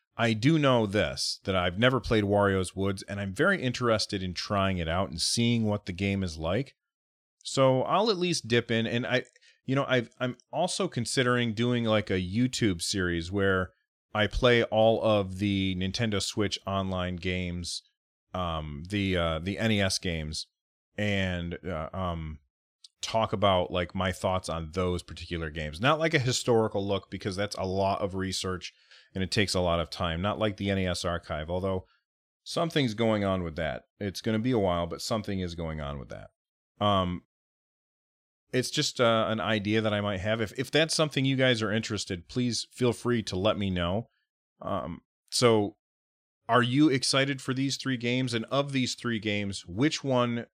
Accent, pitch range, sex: American, 90-120 Hz, male